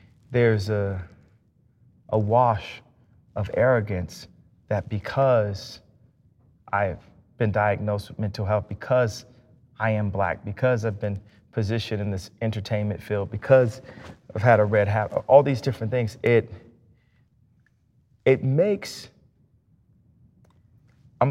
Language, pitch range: English, 110-135 Hz